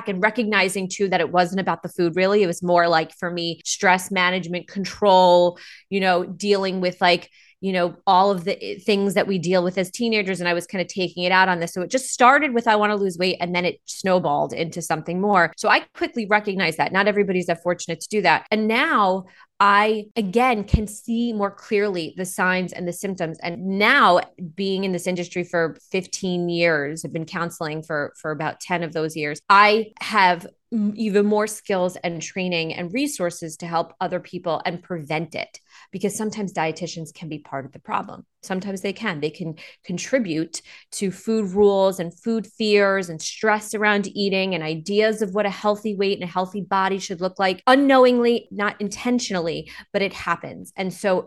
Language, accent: English, American